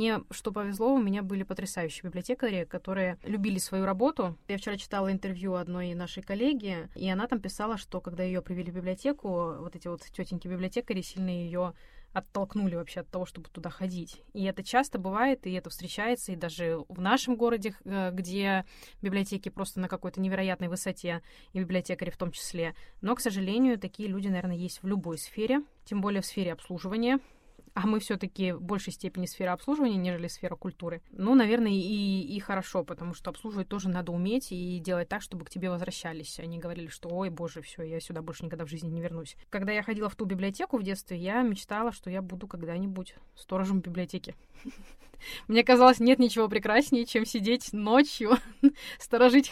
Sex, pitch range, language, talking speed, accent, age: female, 180-225 Hz, Russian, 185 wpm, native, 20-39